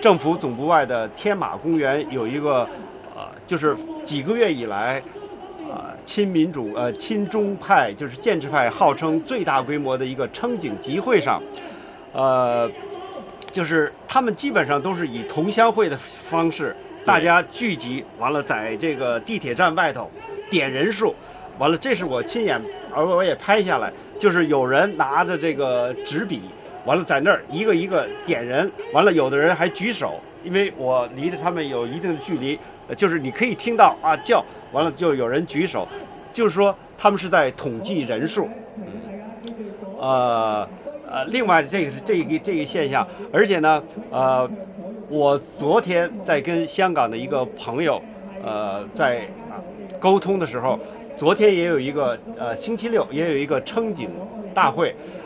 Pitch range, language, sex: 155-230 Hz, English, male